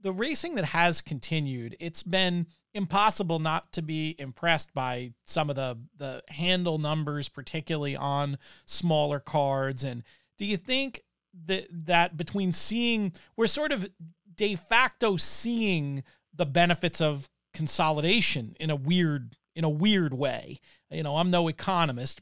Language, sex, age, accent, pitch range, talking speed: English, male, 40-59, American, 145-180 Hz, 145 wpm